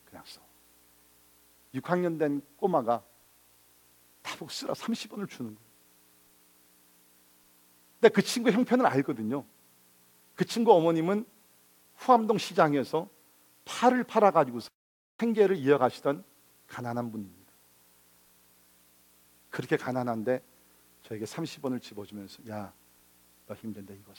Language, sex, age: Korean, male, 50-69